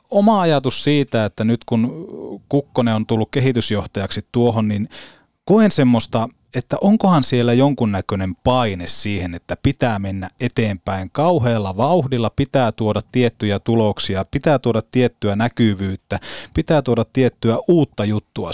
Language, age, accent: Finnish, 30-49, native